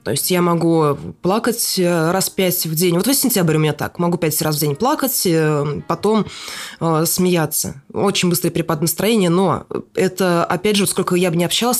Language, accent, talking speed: Russian, native, 190 wpm